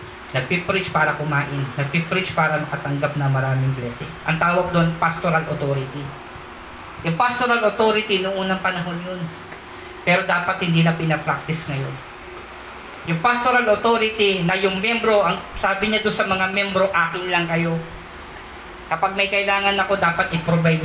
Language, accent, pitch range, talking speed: Filipino, native, 150-190 Hz, 140 wpm